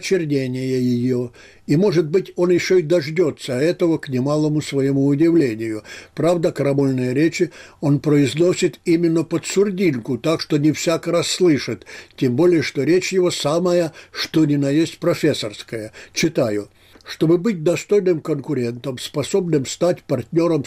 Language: Russian